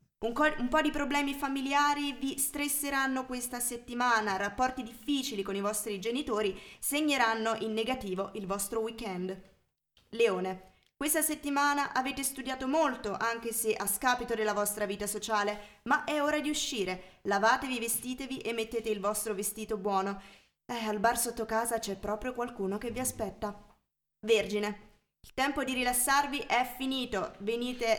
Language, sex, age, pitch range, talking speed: Italian, female, 20-39, 210-270 Hz, 145 wpm